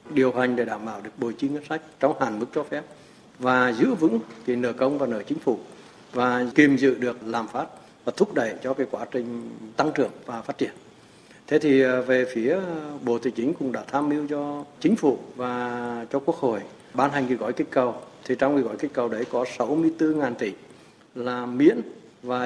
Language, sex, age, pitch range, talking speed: Vietnamese, male, 60-79, 125-155 Hz, 215 wpm